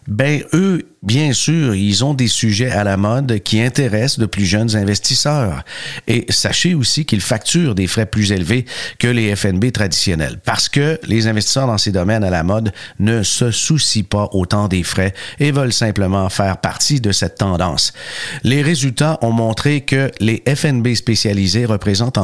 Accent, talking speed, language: Canadian, 175 wpm, French